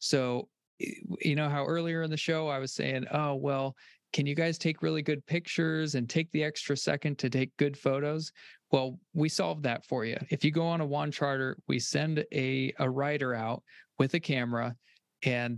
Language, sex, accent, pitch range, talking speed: English, male, American, 125-150 Hz, 200 wpm